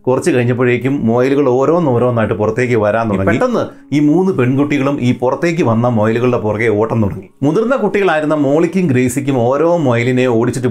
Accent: native